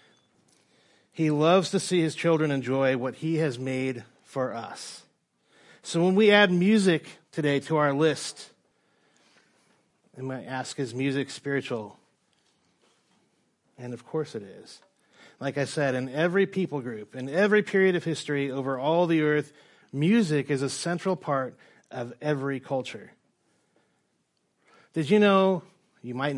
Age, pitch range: 30-49, 125-155 Hz